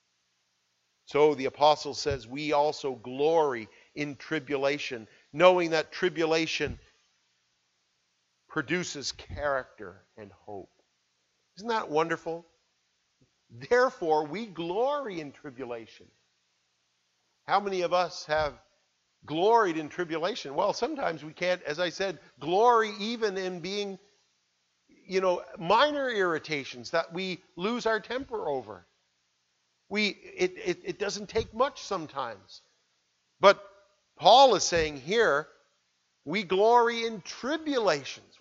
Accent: American